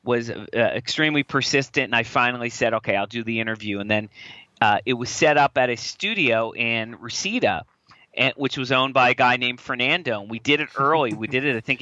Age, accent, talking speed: 40-59, American, 225 wpm